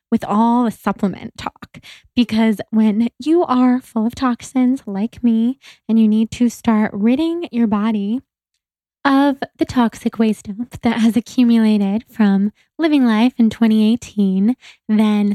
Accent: American